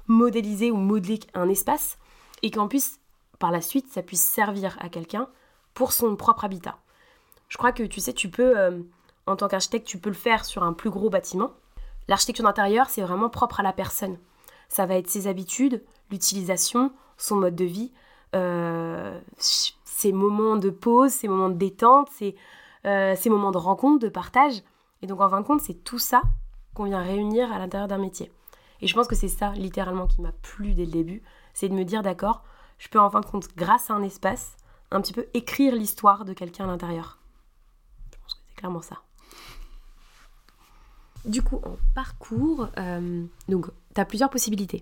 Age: 20-39